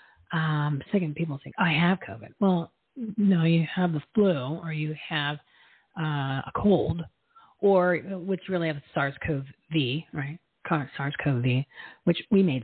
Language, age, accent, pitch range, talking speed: English, 40-59, American, 145-185 Hz, 140 wpm